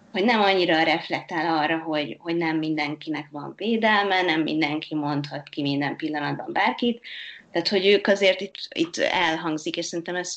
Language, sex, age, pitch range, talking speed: Hungarian, female, 20-39, 155-195 Hz, 160 wpm